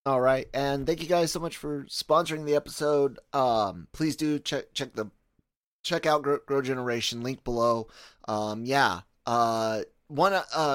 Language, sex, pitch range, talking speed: English, male, 110-145 Hz, 165 wpm